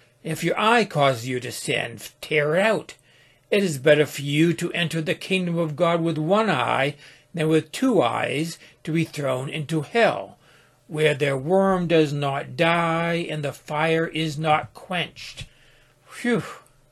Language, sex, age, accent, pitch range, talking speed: English, male, 60-79, American, 145-180 Hz, 165 wpm